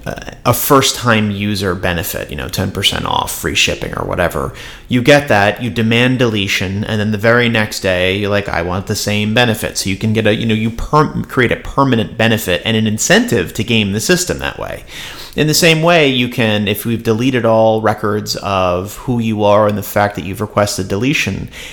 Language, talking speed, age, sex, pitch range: English, 210 wpm, 30-49, male, 100-115 Hz